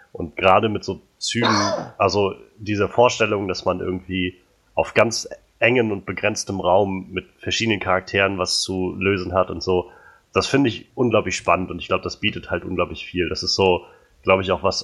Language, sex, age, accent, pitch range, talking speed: German, male, 30-49, German, 90-105 Hz, 185 wpm